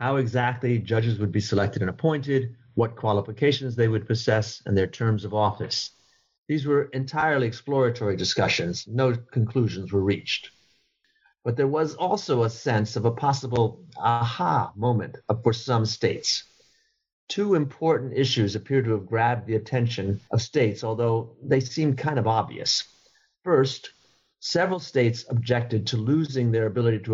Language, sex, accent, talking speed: English, male, American, 150 wpm